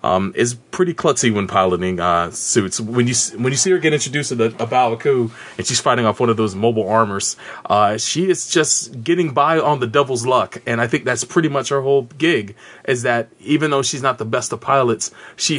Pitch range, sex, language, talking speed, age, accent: 115-155 Hz, male, English, 225 wpm, 30-49, American